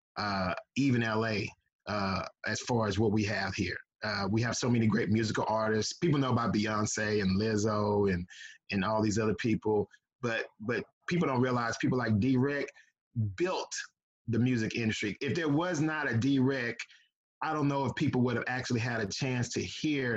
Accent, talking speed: American, 185 wpm